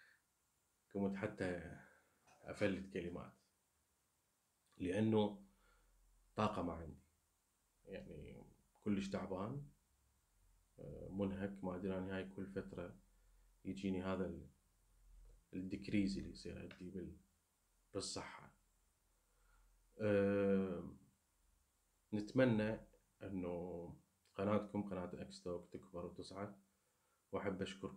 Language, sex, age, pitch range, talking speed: Arabic, male, 30-49, 90-100 Hz, 75 wpm